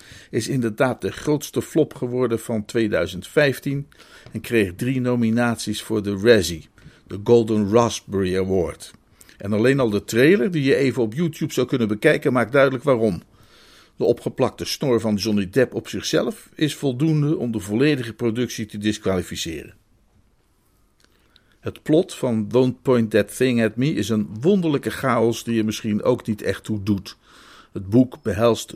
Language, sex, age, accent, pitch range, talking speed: Dutch, male, 50-69, Dutch, 105-130 Hz, 155 wpm